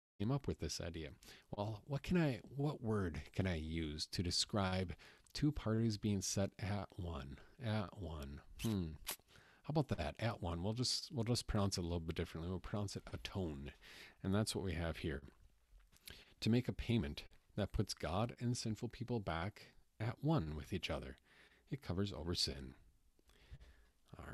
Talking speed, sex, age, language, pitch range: 175 wpm, male, 40-59, English, 85-110 Hz